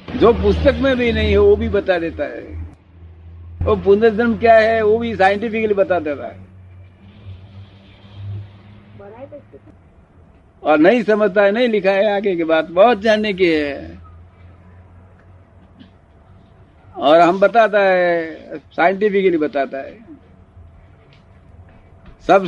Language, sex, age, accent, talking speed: Hindi, male, 60-79, native, 110 wpm